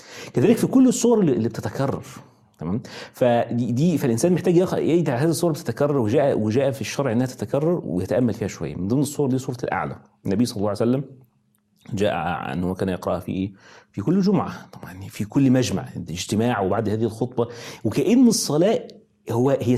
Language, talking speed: Arabic, 165 wpm